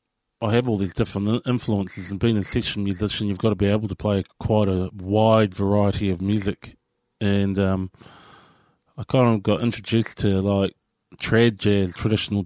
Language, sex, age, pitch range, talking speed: English, male, 20-39, 100-115 Hz, 175 wpm